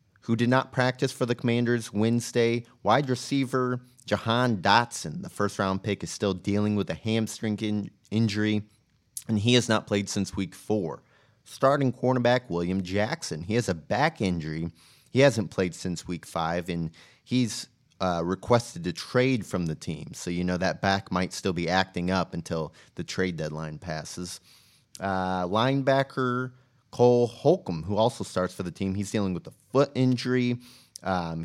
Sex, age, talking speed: male, 30-49, 165 wpm